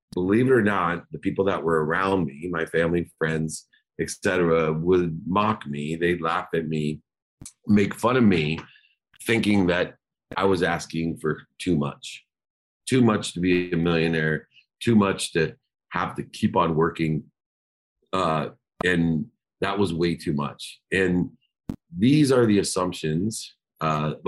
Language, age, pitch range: English, 40-59, 80-95 Hz